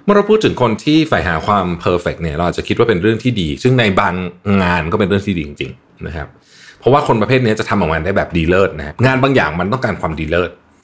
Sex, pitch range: male, 85-120 Hz